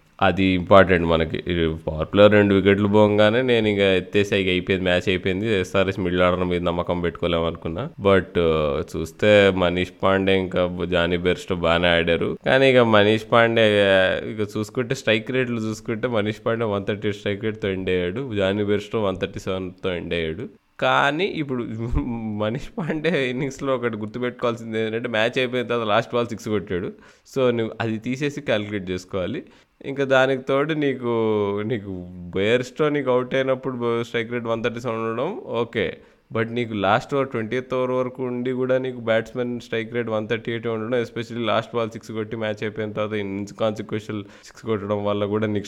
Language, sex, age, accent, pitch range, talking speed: Telugu, male, 20-39, native, 95-120 Hz, 160 wpm